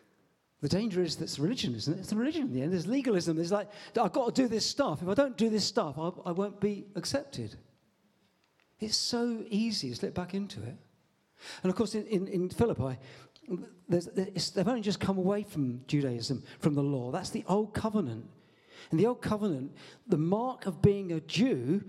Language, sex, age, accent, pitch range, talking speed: English, male, 40-59, British, 150-205 Hz, 200 wpm